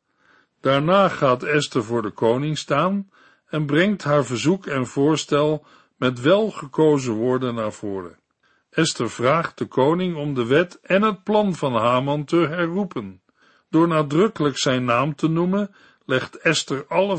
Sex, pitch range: male, 125-165 Hz